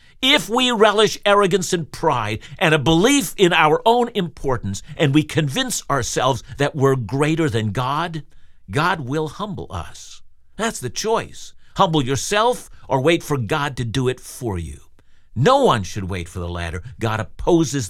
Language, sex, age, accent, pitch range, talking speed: English, male, 50-69, American, 110-160 Hz, 165 wpm